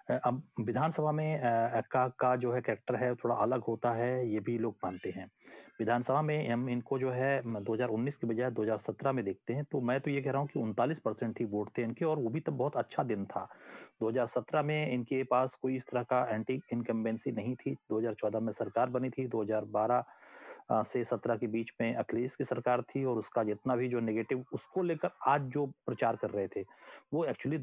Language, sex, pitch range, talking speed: Hindi, male, 110-130 Hz, 180 wpm